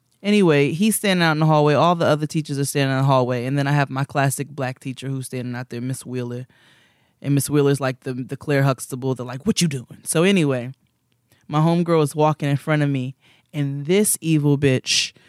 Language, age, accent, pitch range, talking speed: English, 20-39, American, 130-155 Hz, 225 wpm